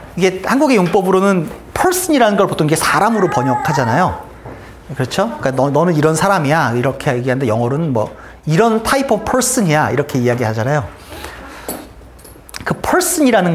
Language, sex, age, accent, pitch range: Korean, male, 40-59, native, 135-215 Hz